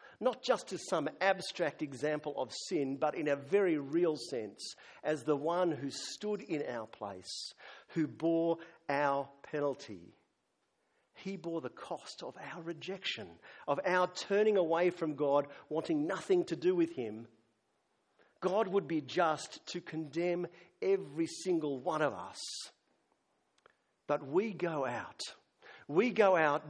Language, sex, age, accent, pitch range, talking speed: English, male, 50-69, Australian, 140-185 Hz, 140 wpm